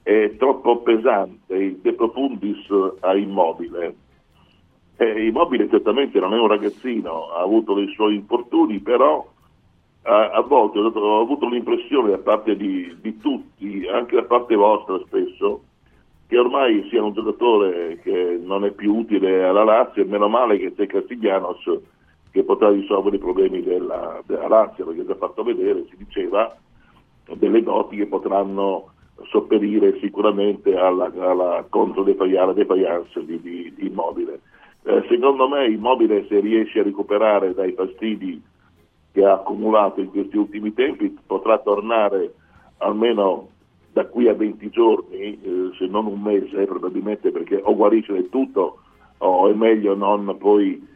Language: Italian